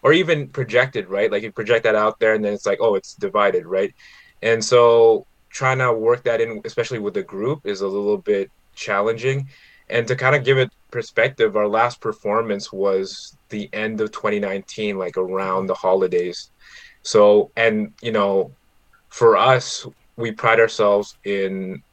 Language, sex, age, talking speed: English, male, 20-39, 170 wpm